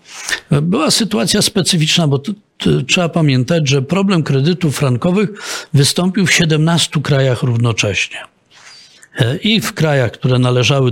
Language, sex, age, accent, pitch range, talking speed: Polish, male, 50-69, native, 120-155 Hz, 120 wpm